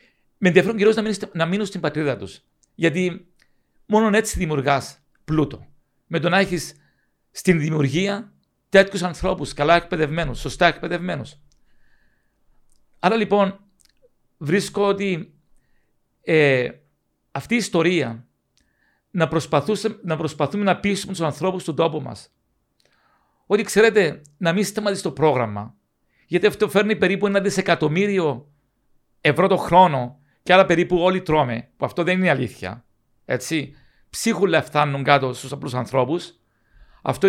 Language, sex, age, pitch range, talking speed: Greek, male, 50-69, 145-190 Hz, 125 wpm